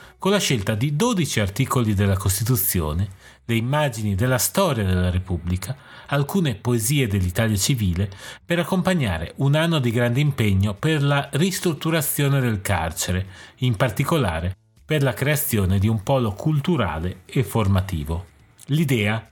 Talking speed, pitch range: 130 wpm, 100-145 Hz